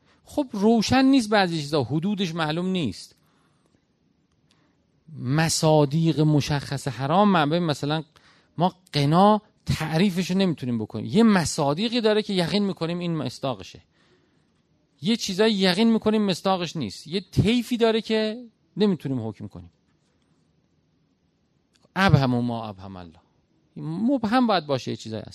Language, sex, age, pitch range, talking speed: Persian, male, 40-59, 130-190 Hz, 125 wpm